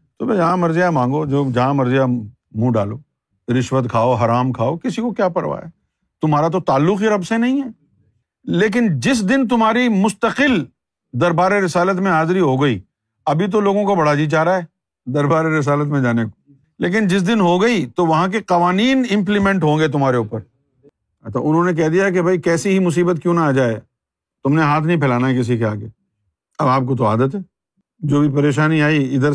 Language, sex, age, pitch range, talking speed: Urdu, male, 50-69, 130-180 Hz, 195 wpm